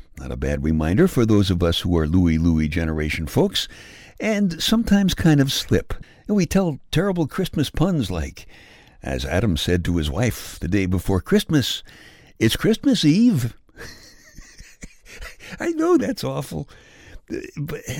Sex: male